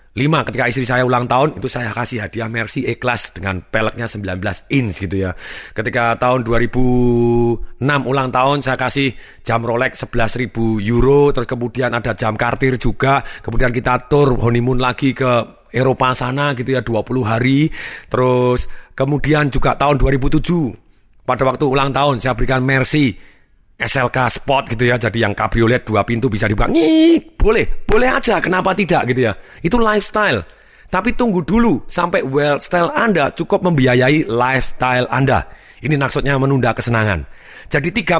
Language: Indonesian